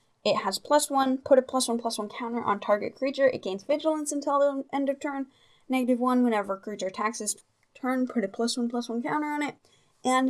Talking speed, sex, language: 220 wpm, female, English